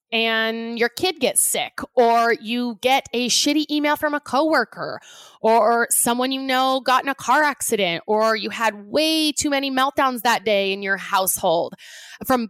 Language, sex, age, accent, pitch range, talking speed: English, female, 20-39, American, 210-275 Hz, 175 wpm